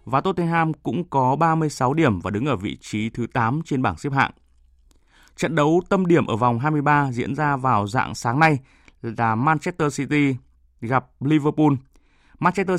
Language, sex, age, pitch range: Vietnamese, male, 20-39, 115-150 Hz